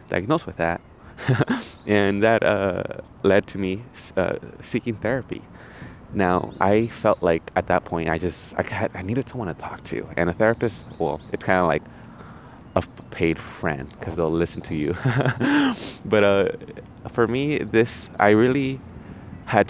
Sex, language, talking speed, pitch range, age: male, English, 160 wpm, 85-110 Hz, 20-39